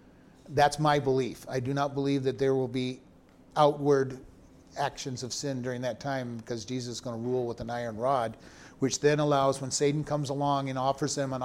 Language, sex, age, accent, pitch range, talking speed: English, male, 40-59, American, 125-145 Hz, 205 wpm